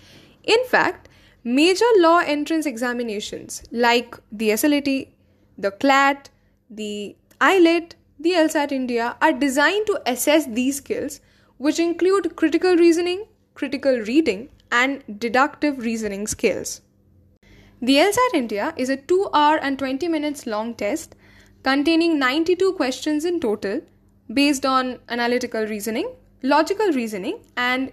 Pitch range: 235-325 Hz